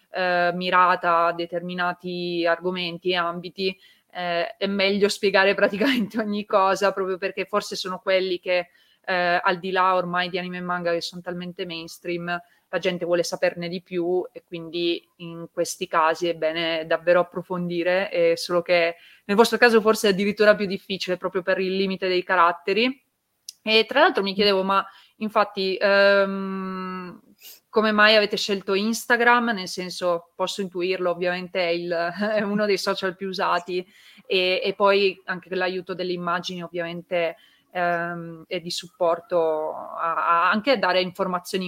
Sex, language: female, Italian